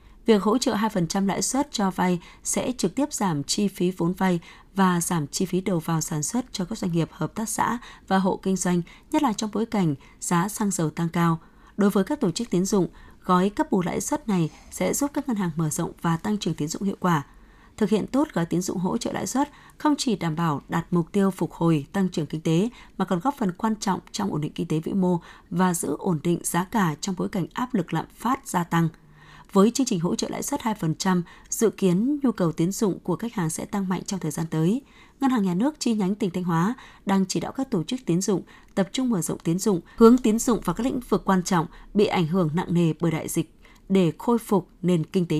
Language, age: Vietnamese, 20-39